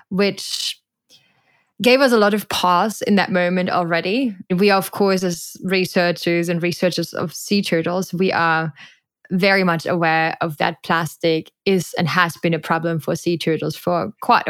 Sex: female